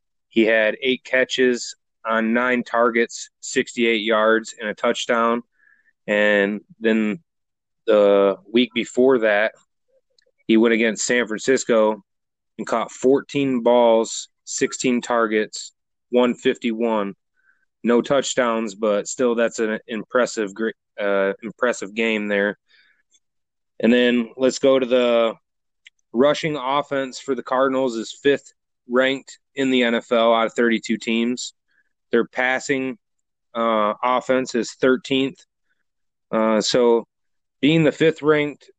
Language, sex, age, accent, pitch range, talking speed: English, male, 20-39, American, 110-130 Hz, 115 wpm